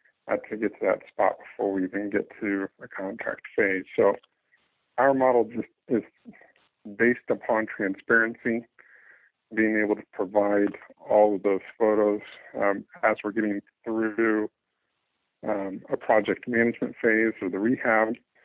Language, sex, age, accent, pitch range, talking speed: English, male, 50-69, American, 100-110 Hz, 135 wpm